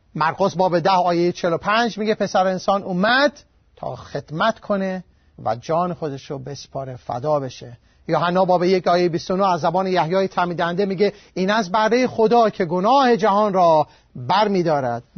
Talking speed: 160 wpm